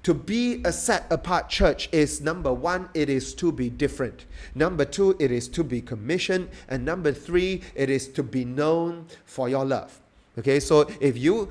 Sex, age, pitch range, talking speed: male, 30-49, 130-170 Hz, 190 wpm